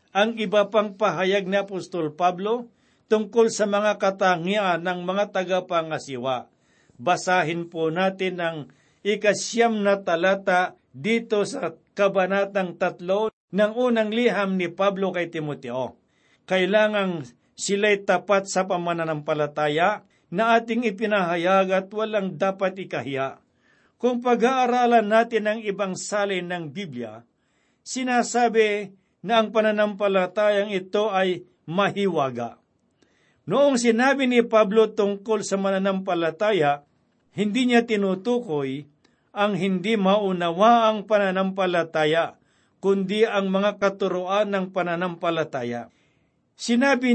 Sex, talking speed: male, 105 wpm